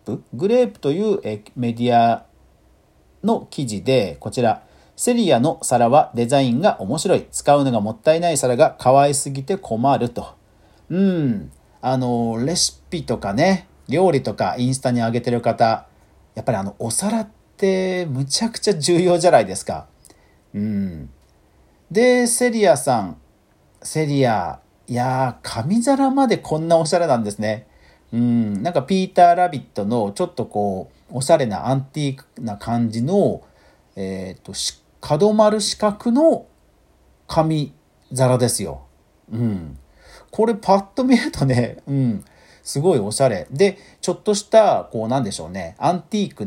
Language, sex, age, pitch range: Japanese, male, 50-69, 105-175 Hz